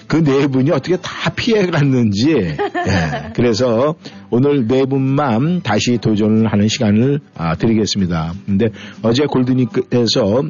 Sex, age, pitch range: male, 50-69, 100-130 Hz